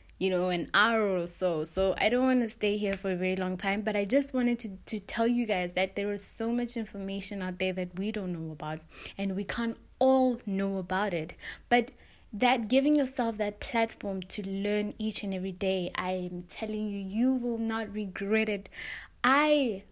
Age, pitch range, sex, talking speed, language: 20-39, 190-235 Hz, female, 205 wpm, English